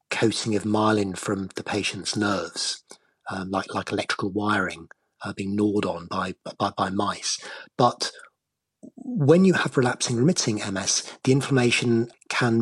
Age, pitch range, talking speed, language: 30-49, 105-130 Hz, 140 wpm, English